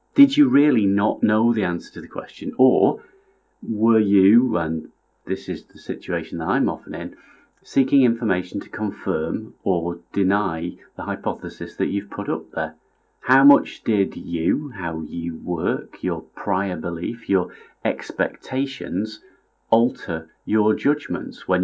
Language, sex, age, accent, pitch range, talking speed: English, male, 40-59, British, 90-120 Hz, 140 wpm